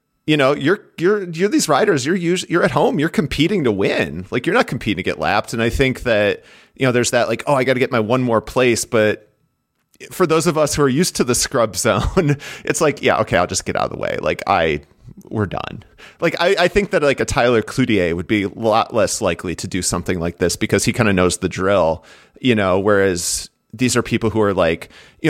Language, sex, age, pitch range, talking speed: English, male, 30-49, 100-140 Hz, 250 wpm